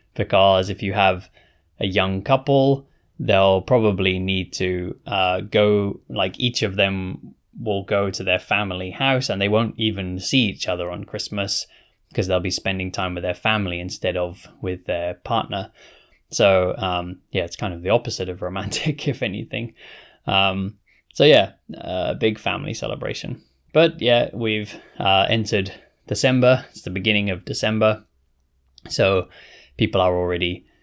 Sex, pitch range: male, 90-115 Hz